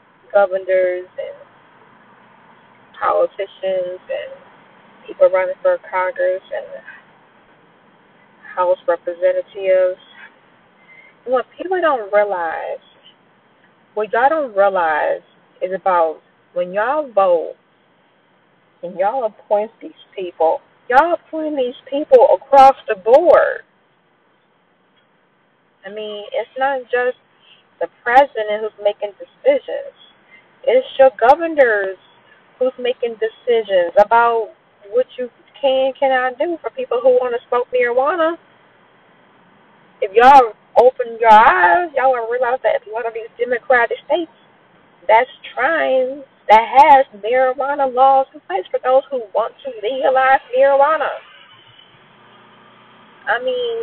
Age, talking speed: 20-39, 110 wpm